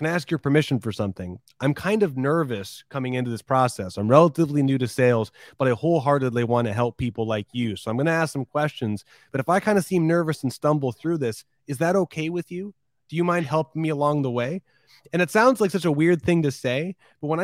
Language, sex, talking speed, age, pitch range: English, male, 250 wpm, 30-49, 120-150 Hz